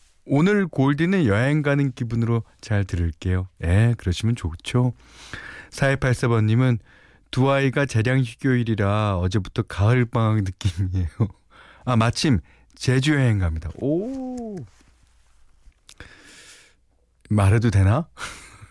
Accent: native